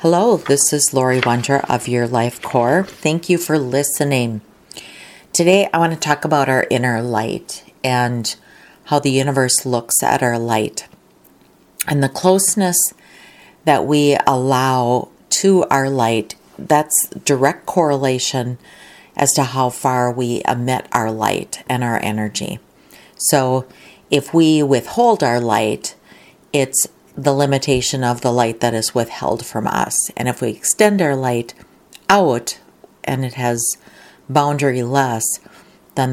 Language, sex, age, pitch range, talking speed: English, female, 40-59, 120-155 Hz, 140 wpm